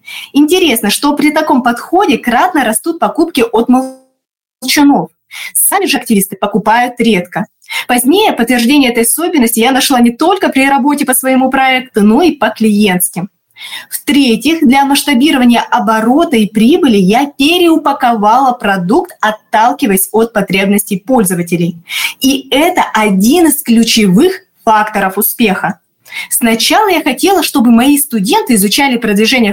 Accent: native